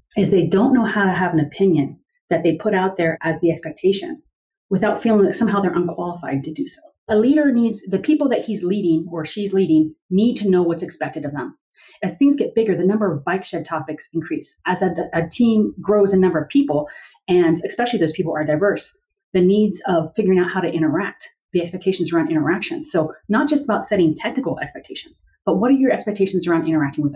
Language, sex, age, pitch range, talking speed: English, female, 30-49, 165-220 Hz, 215 wpm